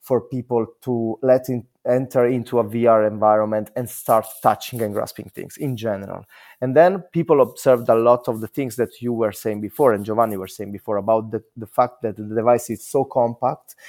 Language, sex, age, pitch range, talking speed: English, male, 20-39, 110-135 Hz, 205 wpm